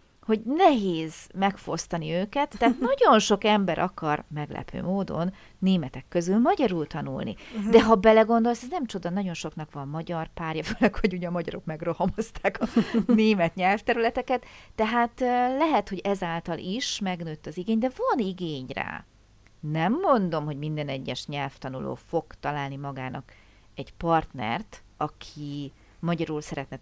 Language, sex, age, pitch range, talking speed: Hungarian, female, 40-59, 150-220 Hz, 135 wpm